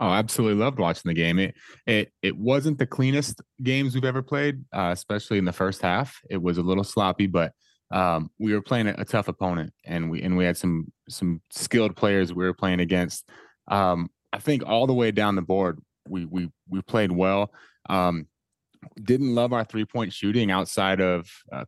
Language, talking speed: English, 200 wpm